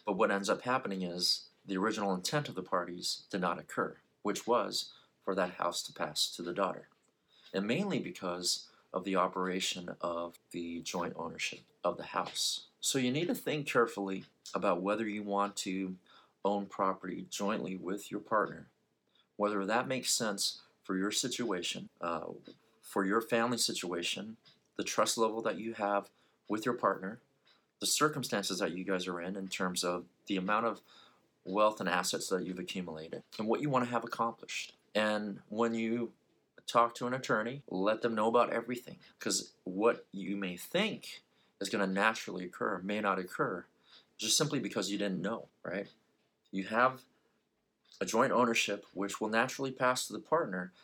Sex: male